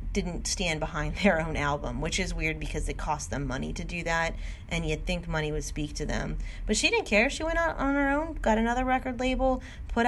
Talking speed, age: 240 wpm, 30-49